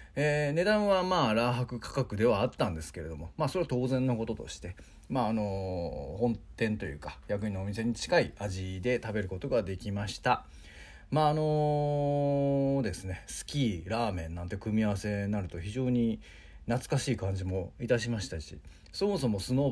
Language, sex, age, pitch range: Japanese, male, 40-59, 90-135 Hz